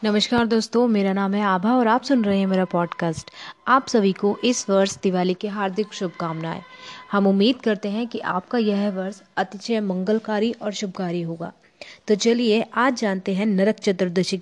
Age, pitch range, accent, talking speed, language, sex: 20-39, 190-230 Hz, native, 175 wpm, Hindi, female